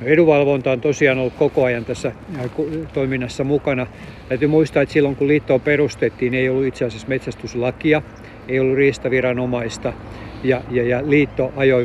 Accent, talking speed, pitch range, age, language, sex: native, 145 wpm, 120-140 Hz, 50-69, Finnish, male